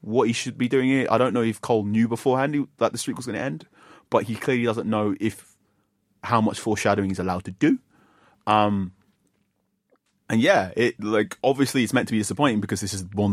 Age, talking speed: 30-49, 220 wpm